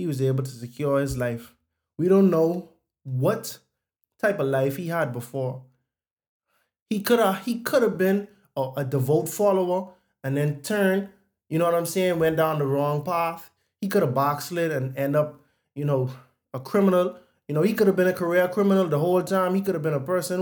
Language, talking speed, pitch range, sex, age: English, 200 wpm, 135-180 Hz, male, 20-39